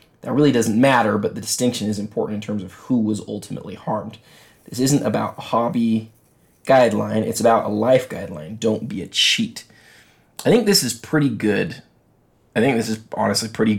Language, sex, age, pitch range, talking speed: English, male, 20-39, 110-125 Hz, 185 wpm